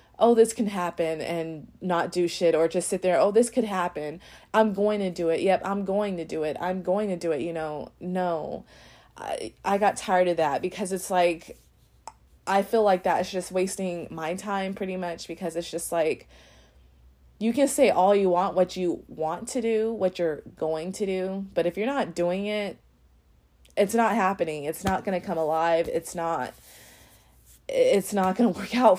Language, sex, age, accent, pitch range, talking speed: English, female, 20-39, American, 165-200 Hz, 200 wpm